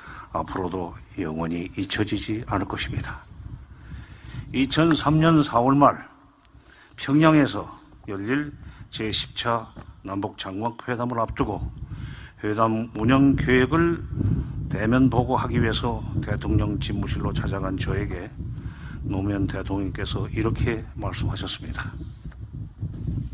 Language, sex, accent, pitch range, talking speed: English, male, Korean, 100-135 Hz, 70 wpm